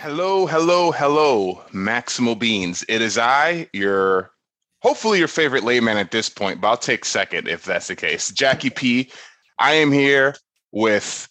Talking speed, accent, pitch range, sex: 165 wpm, American, 105-145 Hz, male